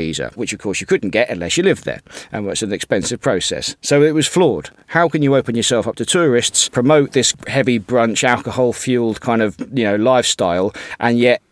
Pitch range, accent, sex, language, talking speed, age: 110-140 Hz, British, male, English, 205 wpm, 40-59